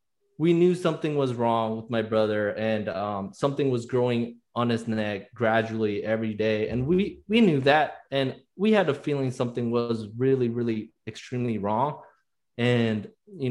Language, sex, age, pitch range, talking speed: English, male, 20-39, 110-135 Hz, 165 wpm